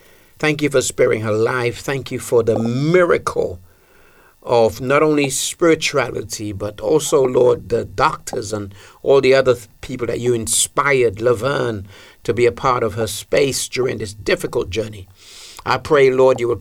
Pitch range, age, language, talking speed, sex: 120-150 Hz, 50-69, English, 165 wpm, male